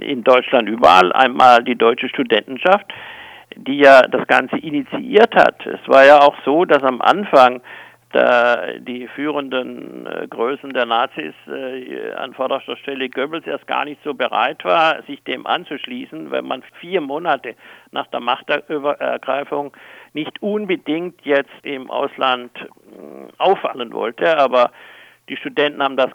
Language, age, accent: German, 60-79, German